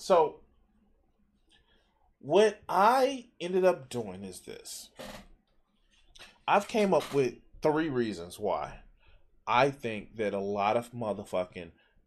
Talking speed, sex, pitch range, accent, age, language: 110 wpm, male, 110-145 Hz, American, 20-39, English